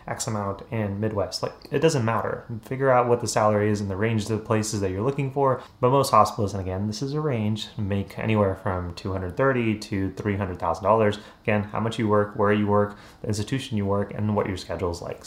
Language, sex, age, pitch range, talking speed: English, male, 30-49, 95-115 Hz, 225 wpm